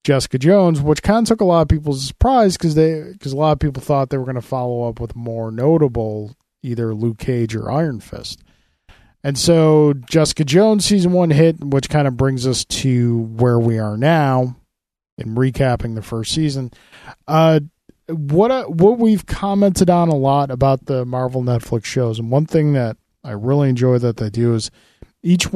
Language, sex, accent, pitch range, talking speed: English, male, American, 115-150 Hz, 190 wpm